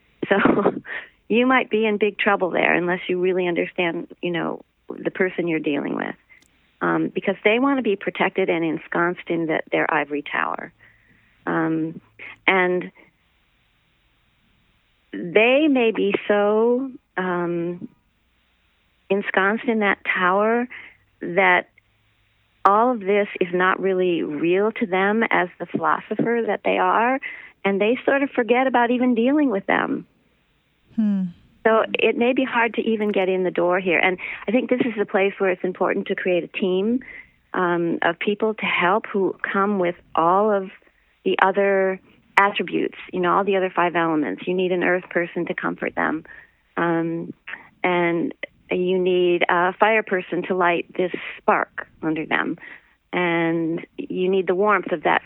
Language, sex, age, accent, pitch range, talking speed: English, female, 40-59, American, 170-210 Hz, 155 wpm